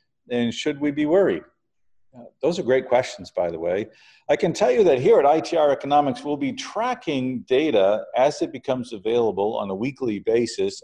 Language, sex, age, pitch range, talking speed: English, male, 50-69, 110-180 Hz, 185 wpm